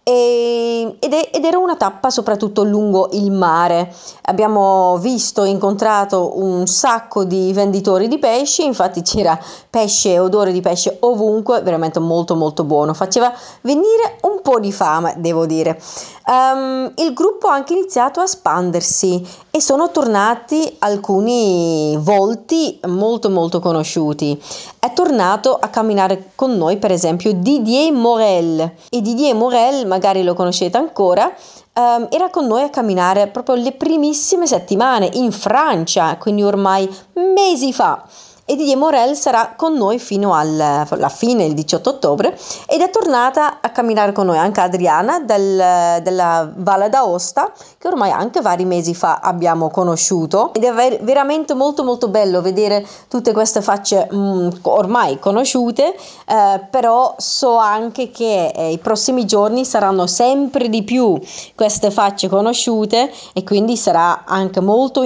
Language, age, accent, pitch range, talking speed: Italian, 30-49, native, 185-255 Hz, 135 wpm